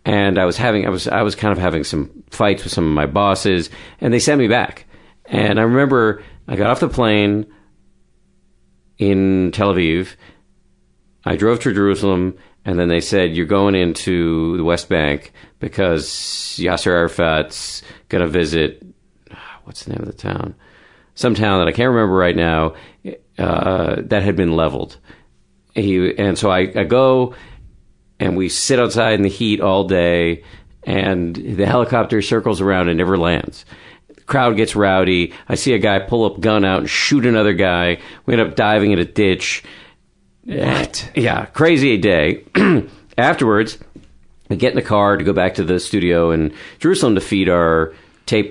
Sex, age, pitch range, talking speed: male, 50-69, 85-105 Hz, 180 wpm